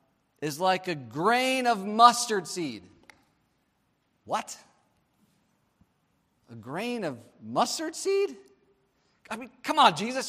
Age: 40-59